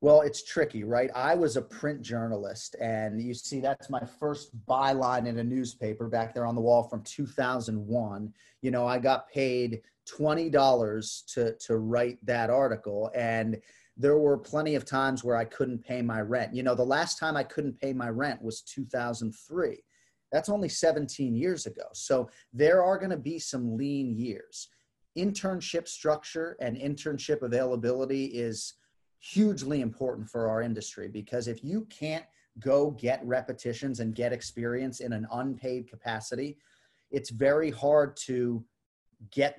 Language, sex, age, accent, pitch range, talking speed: English, male, 30-49, American, 115-140 Hz, 160 wpm